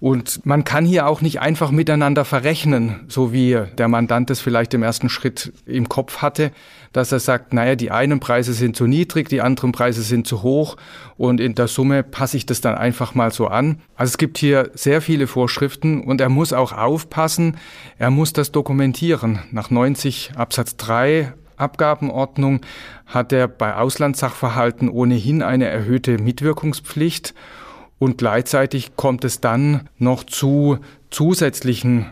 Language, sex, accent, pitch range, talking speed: German, male, German, 120-140 Hz, 160 wpm